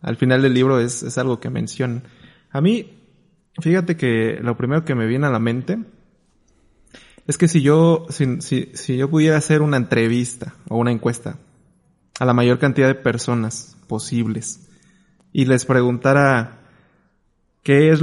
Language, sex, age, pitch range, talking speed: Spanish, male, 20-39, 120-145 Hz, 160 wpm